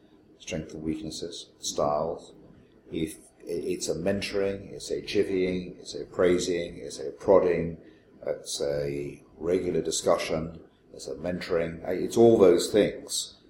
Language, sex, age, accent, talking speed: English, male, 50-69, British, 120 wpm